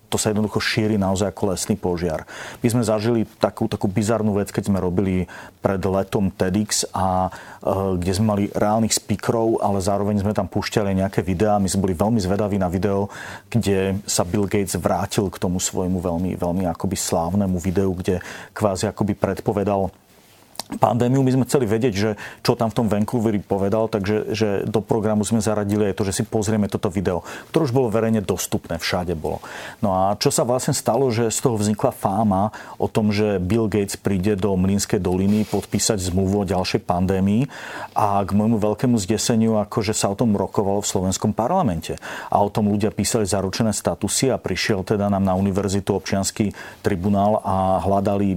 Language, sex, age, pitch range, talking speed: Slovak, male, 40-59, 95-110 Hz, 180 wpm